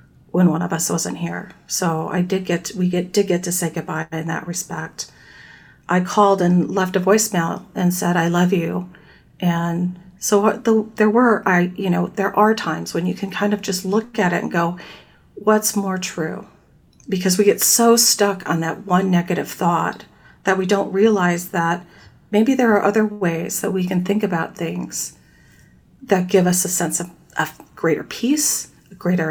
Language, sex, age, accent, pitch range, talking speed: English, female, 40-59, American, 175-210 Hz, 190 wpm